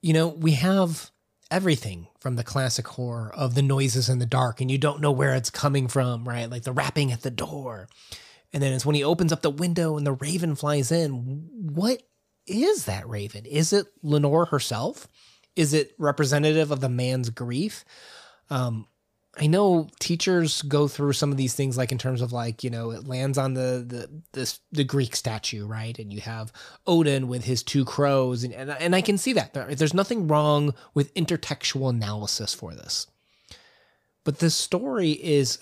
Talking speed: 190 wpm